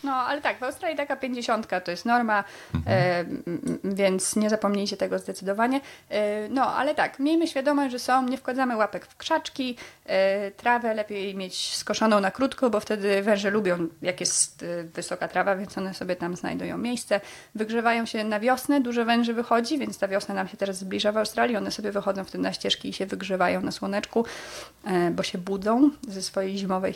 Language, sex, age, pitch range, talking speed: Polish, female, 20-39, 190-230 Hz, 190 wpm